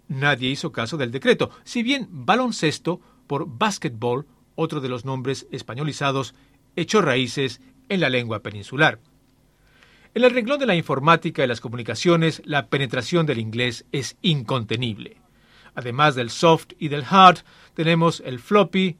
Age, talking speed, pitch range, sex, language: 50-69, 140 wpm, 130-175 Hz, male, English